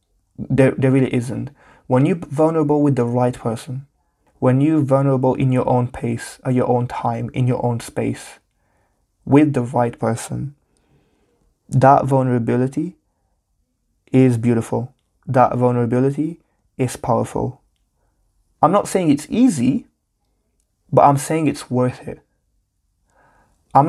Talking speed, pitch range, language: 125 wpm, 120-140 Hz, English